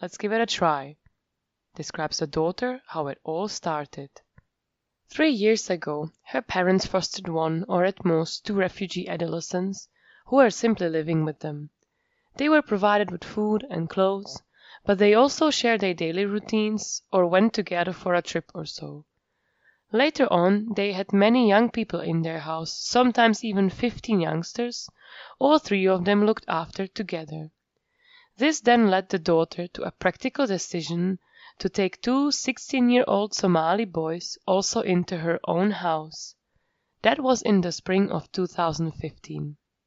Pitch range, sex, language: 165-220 Hz, female, English